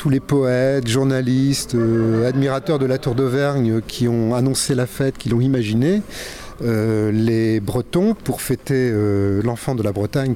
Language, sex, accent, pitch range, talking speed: French, male, French, 110-135 Hz, 160 wpm